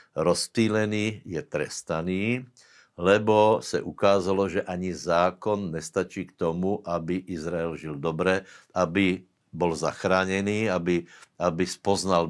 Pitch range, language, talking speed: 90-105 Hz, Slovak, 105 wpm